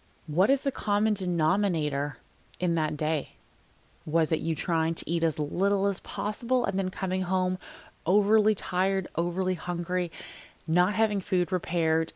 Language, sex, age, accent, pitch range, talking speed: English, female, 20-39, American, 155-195 Hz, 150 wpm